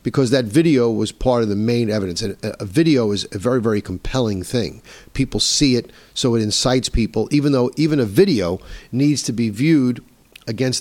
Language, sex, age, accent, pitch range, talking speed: English, male, 50-69, American, 100-130 Hz, 195 wpm